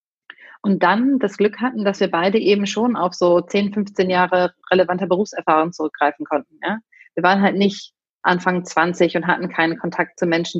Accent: German